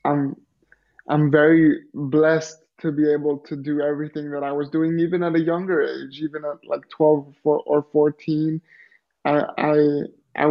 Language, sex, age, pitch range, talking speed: English, male, 20-39, 150-170 Hz, 160 wpm